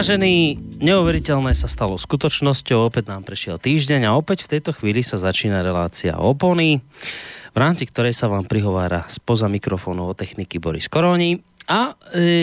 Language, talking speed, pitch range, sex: Slovak, 155 wpm, 105-150 Hz, male